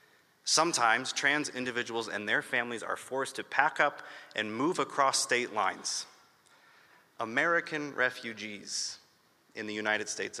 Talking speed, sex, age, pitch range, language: 125 wpm, male, 30-49, 120-145 Hz, English